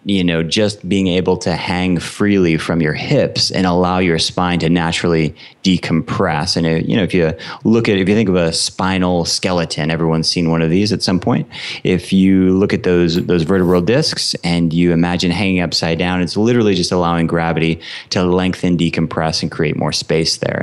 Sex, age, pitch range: male, 30-49, 85-100 Hz